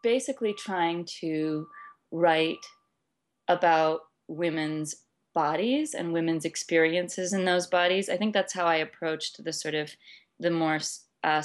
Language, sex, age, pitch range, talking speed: English, female, 20-39, 155-175 Hz, 130 wpm